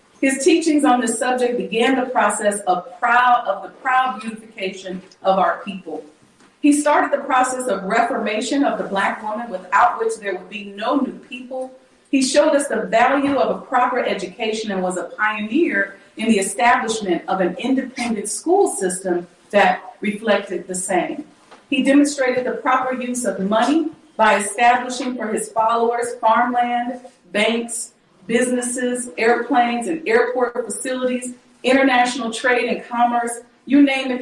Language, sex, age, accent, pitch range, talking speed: English, female, 40-59, American, 200-260 Hz, 150 wpm